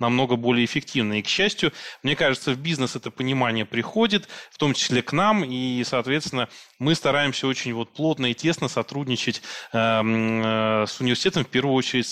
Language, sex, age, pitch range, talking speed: Russian, male, 20-39, 125-155 Hz, 160 wpm